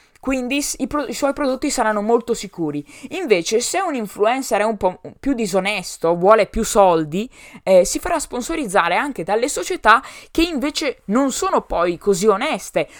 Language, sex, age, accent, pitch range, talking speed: Italian, female, 20-39, native, 175-255 Hz, 150 wpm